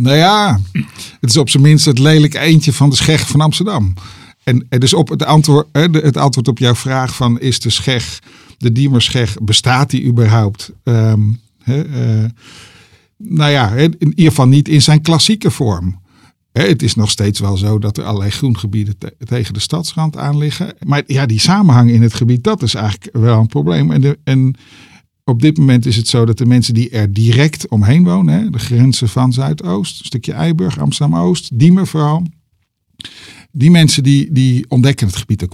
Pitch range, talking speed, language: 115-150 Hz, 190 wpm, Dutch